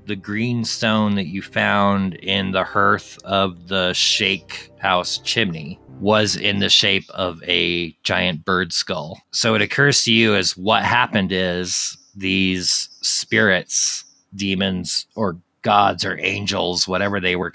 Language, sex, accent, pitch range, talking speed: English, male, American, 90-105 Hz, 145 wpm